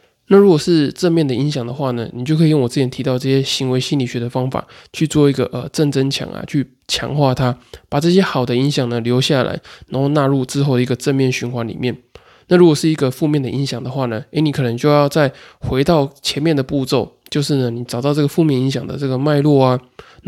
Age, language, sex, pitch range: 20-39, Chinese, male, 125-150 Hz